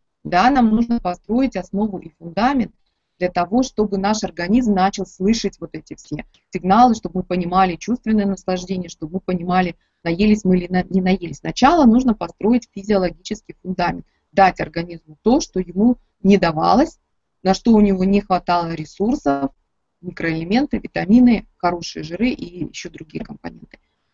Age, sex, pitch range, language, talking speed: 20-39, female, 175-220 Hz, Russian, 145 wpm